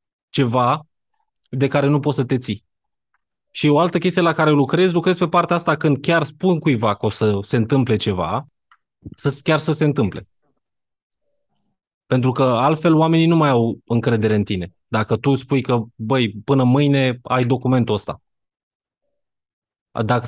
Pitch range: 115-150 Hz